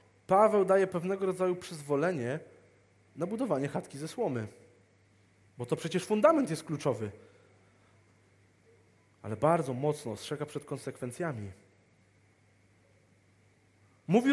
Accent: native